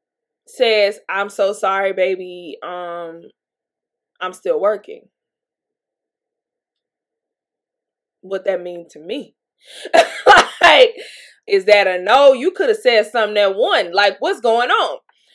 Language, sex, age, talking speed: English, female, 20-39, 115 wpm